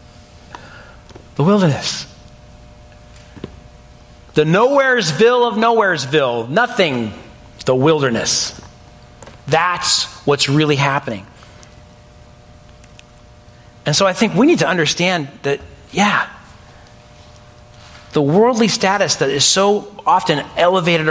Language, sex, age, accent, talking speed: English, male, 40-59, American, 90 wpm